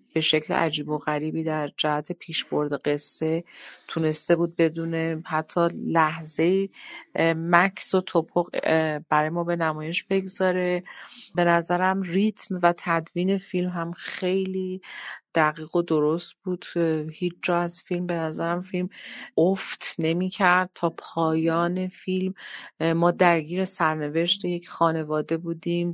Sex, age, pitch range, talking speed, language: female, 40-59, 160-185 Hz, 125 wpm, Persian